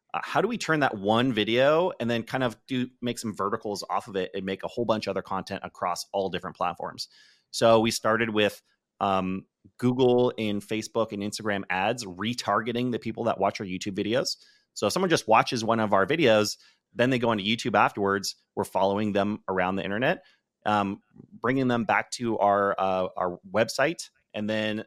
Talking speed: 200 wpm